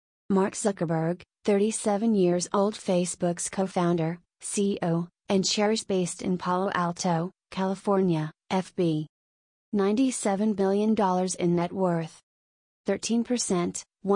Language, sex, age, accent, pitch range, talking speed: English, female, 30-49, American, 175-205 Hz, 95 wpm